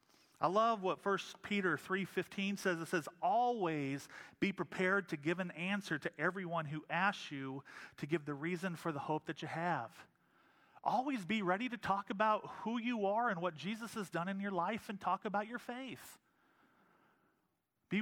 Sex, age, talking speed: male, 40-59, 180 wpm